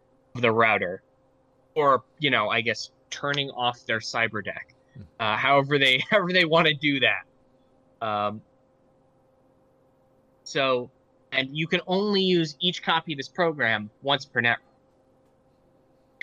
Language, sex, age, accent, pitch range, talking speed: English, male, 20-39, American, 130-160 Hz, 135 wpm